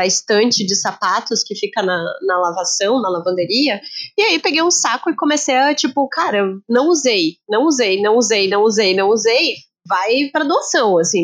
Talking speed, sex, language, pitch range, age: 190 wpm, female, Portuguese, 210-280 Hz, 20-39